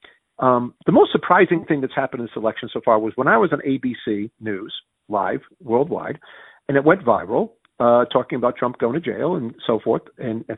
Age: 50-69